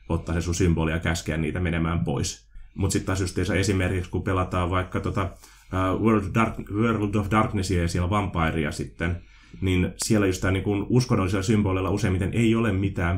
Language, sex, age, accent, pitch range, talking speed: Finnish, male, 30-49, native, 85-105 Hz, 170 wpm